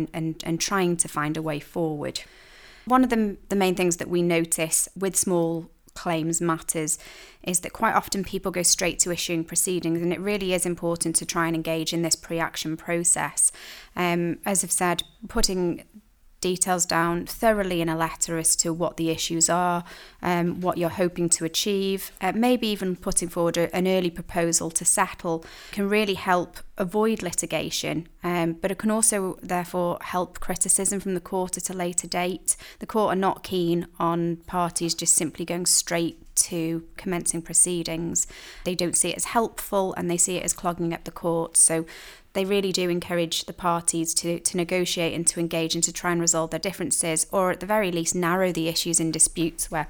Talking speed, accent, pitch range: 190 wpm, British, 165-185 Hz